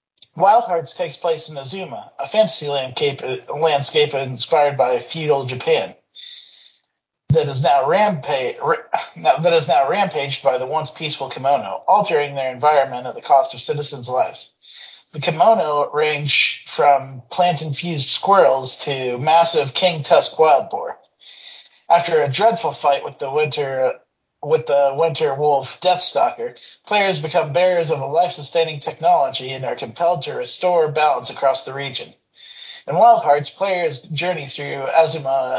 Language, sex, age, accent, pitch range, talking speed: English, male, 40-59, American, 135-180 Hz, 135 wpm